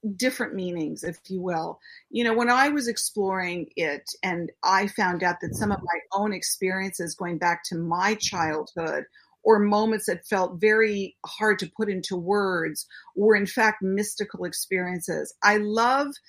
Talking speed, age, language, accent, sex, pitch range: 160 wpm, 50-69, English, American, female, 180-225 Hz